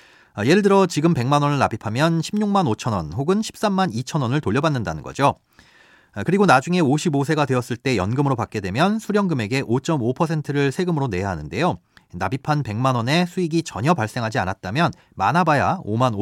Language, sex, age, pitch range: Korean, male, 40-59, 120-175 Hz